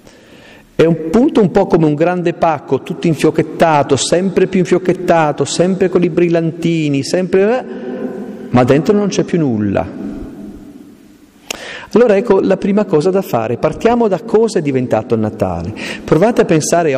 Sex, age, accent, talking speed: male, 40-59, native, 150 wpm